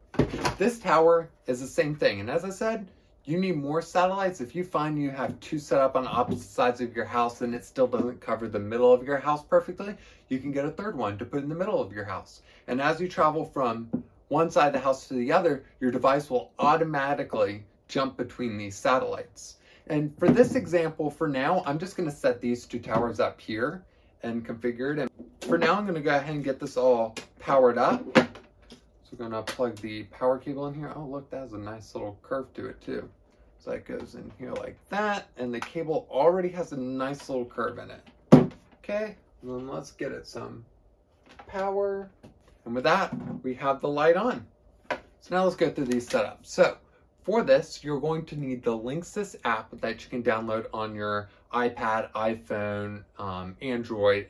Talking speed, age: 205 wpm, 20-39